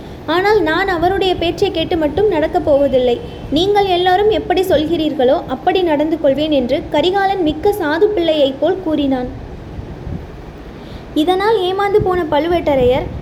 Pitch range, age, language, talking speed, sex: 300-380 Hz, 20-39, Tamil, 120 wpm, female